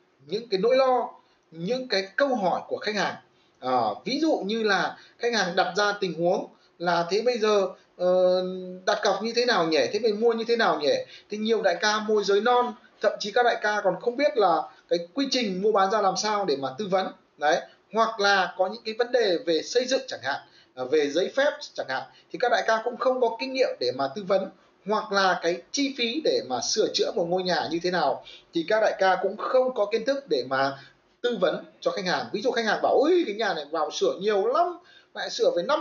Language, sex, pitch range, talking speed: Vietnamese, male, 185-265 Hz, 245 wpm